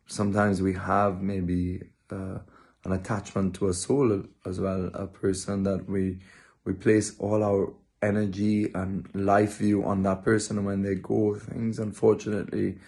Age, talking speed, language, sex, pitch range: 30-49, 150 wpm, English, male, 95-110 Hz